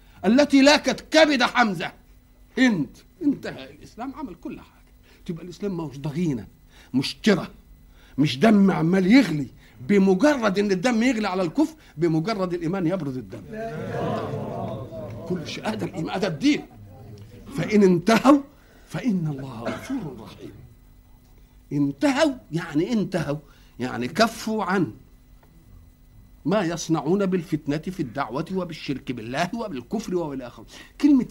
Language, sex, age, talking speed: Arabic, male, 50-69, 110 wpm